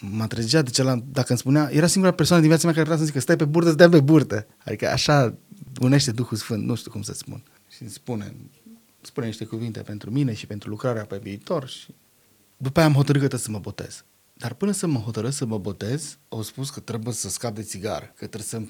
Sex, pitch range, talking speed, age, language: male, 110-150 Hz, 235 wpm, 30-49, Romanian